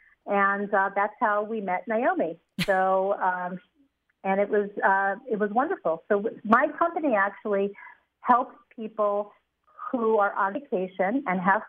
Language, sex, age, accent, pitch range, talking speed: English, female, 50-69, American, 195-245 Hz, 145 wpm